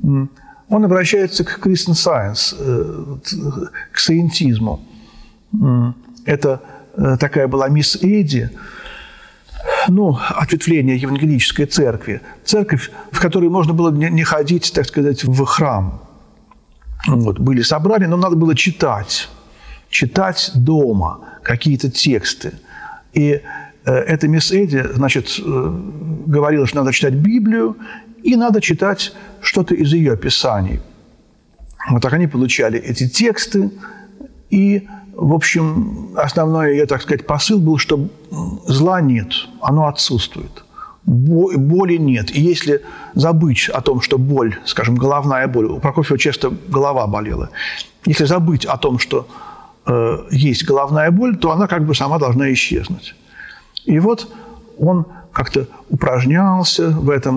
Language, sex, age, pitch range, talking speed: Russian, male, 50-69, 135-185 Hz, 120 wpm